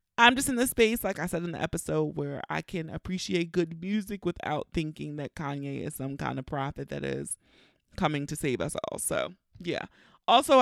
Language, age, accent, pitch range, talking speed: English, 30-49, American, 155-200 Hz, 210 wpm